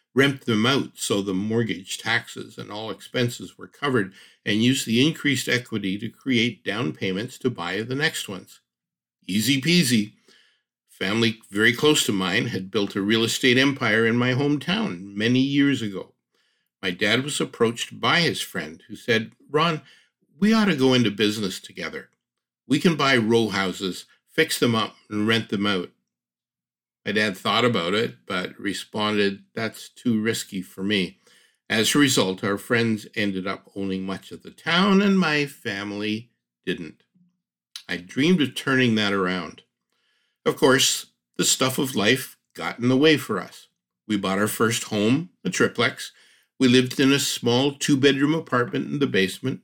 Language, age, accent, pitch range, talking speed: English, 60-79, American, 105-140 Hz, 165 wpm